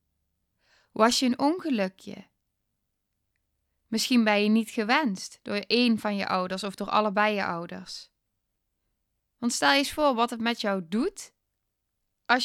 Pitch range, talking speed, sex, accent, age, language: 190-255 Hz, 145 wpm, female, Dutch, 10-29, Dutch